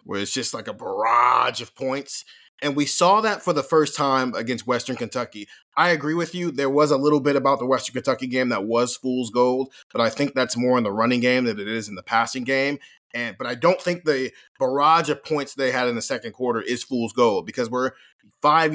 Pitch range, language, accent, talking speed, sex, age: 125-150 Hz, English, American, 235 wpm, male, 30-49